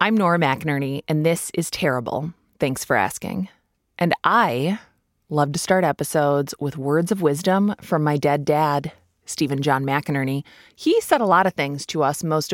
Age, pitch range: 20-39, 145-200 Hz